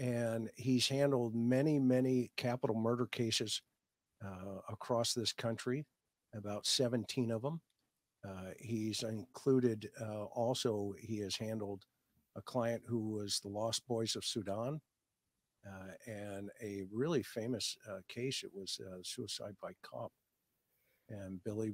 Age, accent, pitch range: 50-69, American, 105-125 Hz